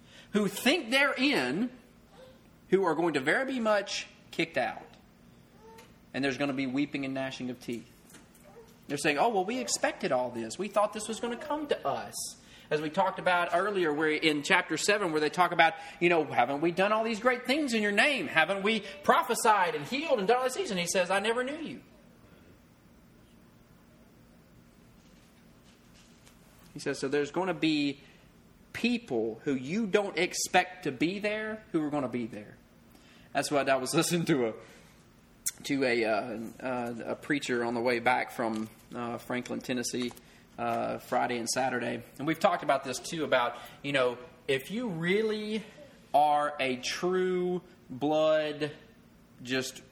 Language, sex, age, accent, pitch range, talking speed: English, male, 30-49, American, 130-205 Hz, 175 wpm